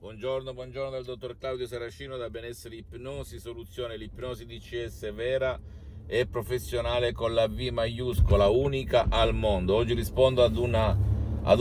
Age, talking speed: 50-69, 140 wpm